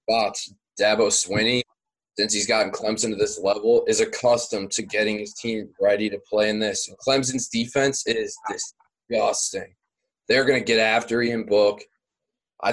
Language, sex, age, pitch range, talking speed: English, male, 20-39, 105-130 Hz, 165 wpm